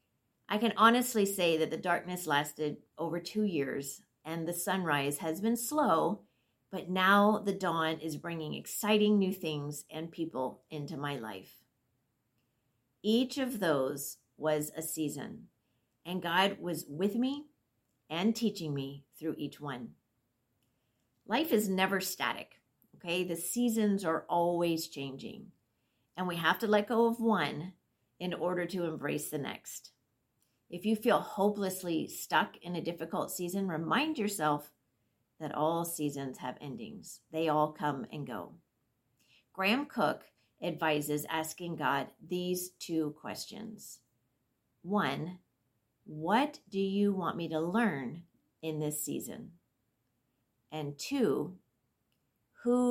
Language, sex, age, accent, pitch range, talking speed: English, female, 50-69, American, 135-195 Hz, 130 wpm